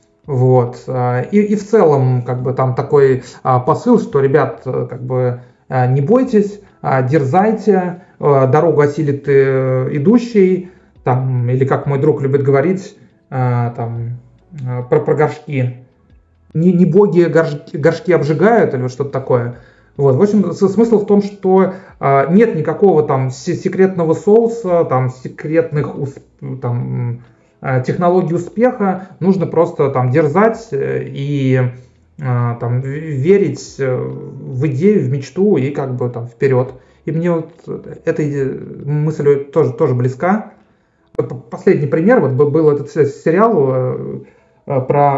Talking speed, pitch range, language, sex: 115 wpm, 130-180 Hz, Russian, male